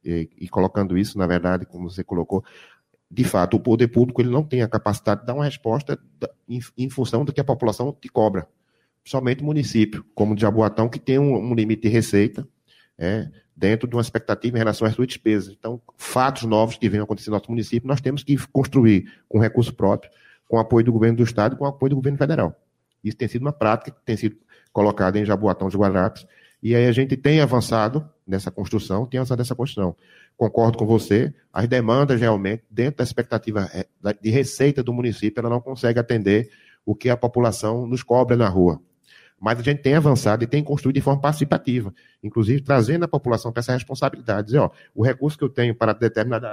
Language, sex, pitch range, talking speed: Portuguese, male, 105-125 Hz, 200 wpm